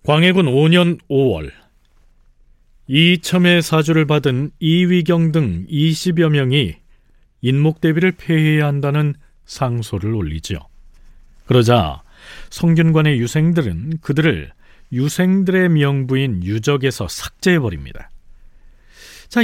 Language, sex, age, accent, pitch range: Korean, male, 40-59, native, 110-160 Hz